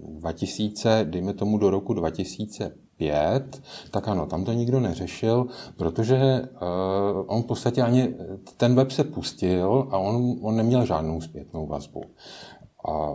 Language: Czech